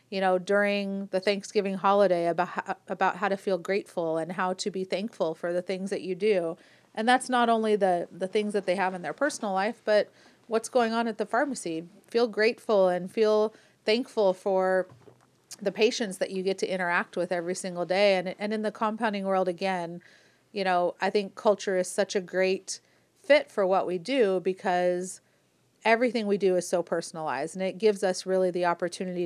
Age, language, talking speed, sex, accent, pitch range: 30-49, English, 195 wpm, female, American, 180-210 Hz